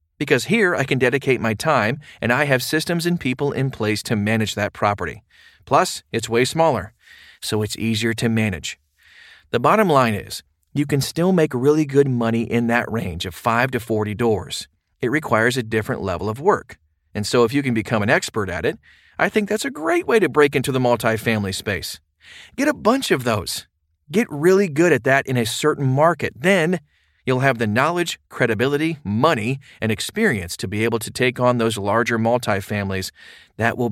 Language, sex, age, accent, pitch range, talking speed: English, male, 40-59, American, 105-145 Hz, 195 wpm